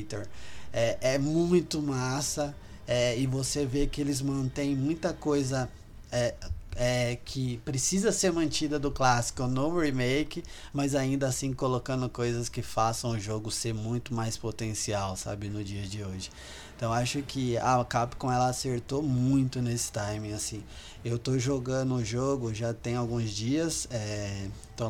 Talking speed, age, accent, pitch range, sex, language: 150 wpm, 20-39, Brazilian, 110-135 Hz, male, Portuguese